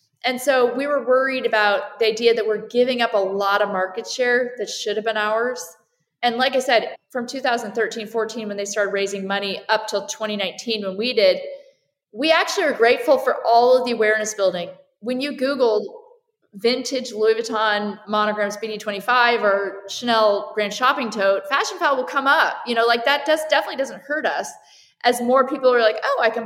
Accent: American